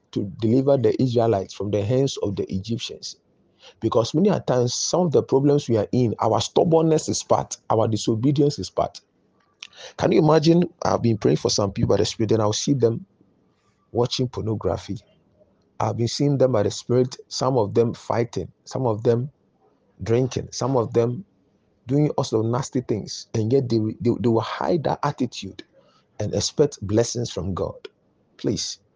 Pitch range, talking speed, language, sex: 105-135 Hz, 175 wpm, English, male